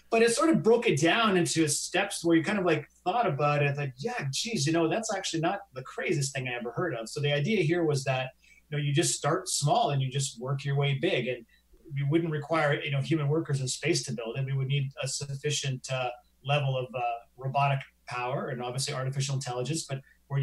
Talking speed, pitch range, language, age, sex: 240 wpm, 135-160 Hz, English, 30-49, male